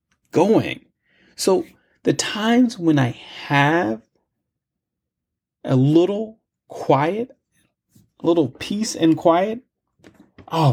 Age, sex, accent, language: 30-49, male, American, English